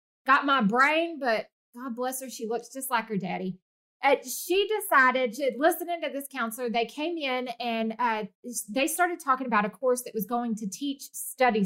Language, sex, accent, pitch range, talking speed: English, female, American, 220-290 Hz, 190 wpm